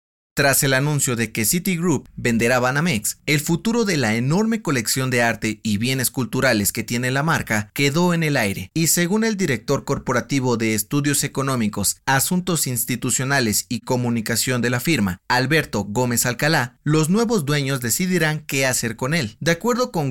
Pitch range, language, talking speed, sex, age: 115-160 Hz, Spanish, 165 wpm, male, 30-49